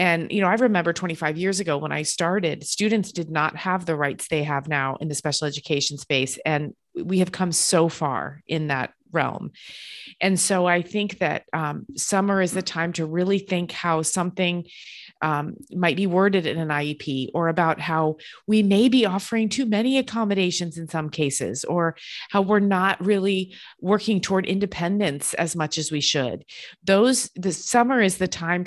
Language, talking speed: English, 185 wpm